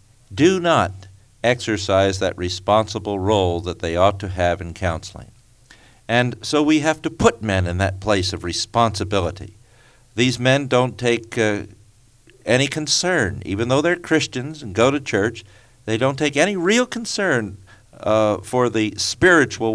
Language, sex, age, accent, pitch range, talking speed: English, male, 50-69, American, 100-130 Hz, 150 wpm